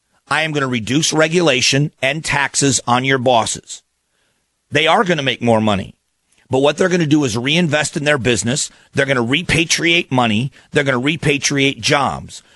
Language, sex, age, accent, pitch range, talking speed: English, male, 40-59, American, 115-145 Hz, 185 wpm